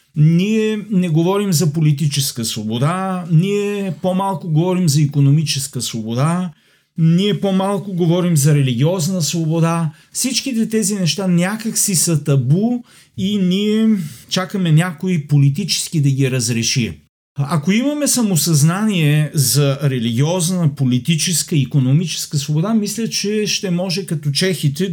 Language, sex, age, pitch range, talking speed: Bulgarian, male, 40-59, 150-190 Hz, 115 wpm